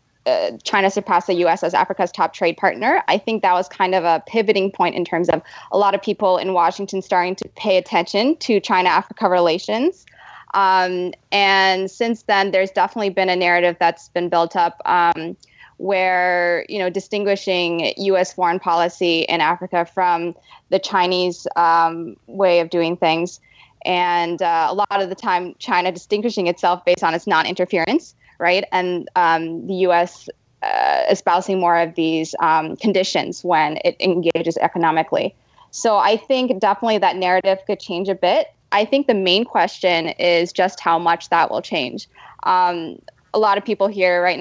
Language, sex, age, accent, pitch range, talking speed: English, female, 20-39, American, 170-200 Hz, 170 wpm